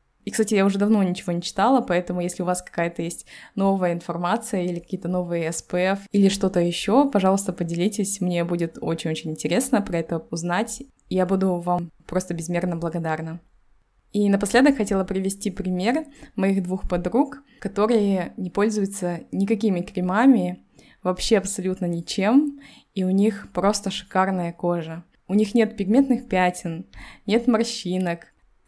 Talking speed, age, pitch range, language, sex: 140 wpm, 20-39, 175-205 Hz, Russian, female